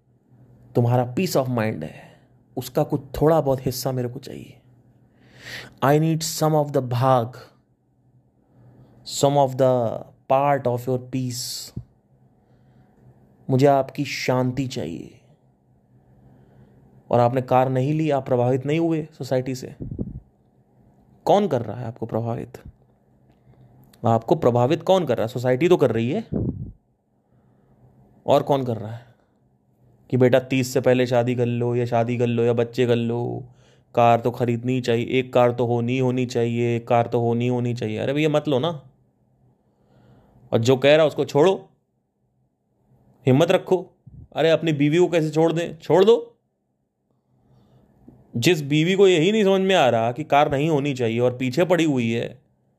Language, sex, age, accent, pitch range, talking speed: Hindi, male, 30-49, native, 115-145 Hz, 155 wpm